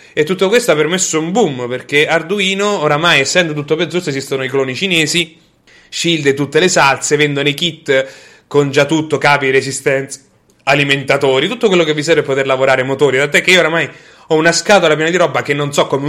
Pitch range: 135-165 Hz